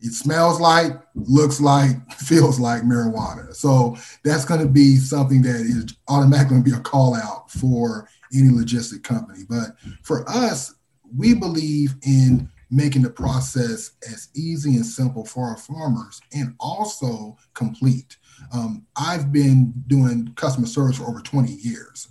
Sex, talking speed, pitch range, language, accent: male, 150 wpm, 120-145 Hz, English, American